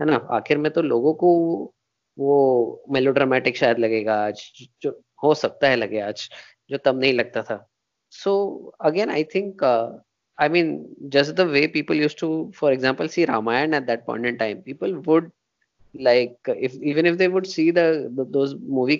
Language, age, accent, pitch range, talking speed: Hindi, 20-39, native, 130-170 Hz, 175 wpm